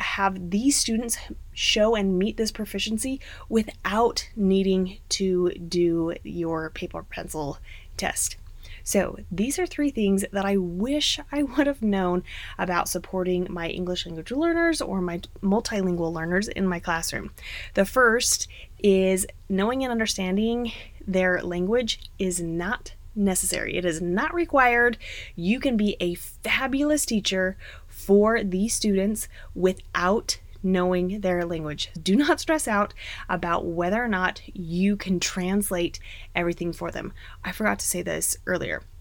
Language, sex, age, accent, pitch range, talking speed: English, female, 20-39, American, 180-230 Hz, 135 wpm